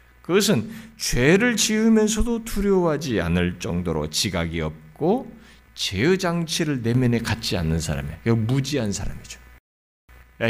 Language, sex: Korean, male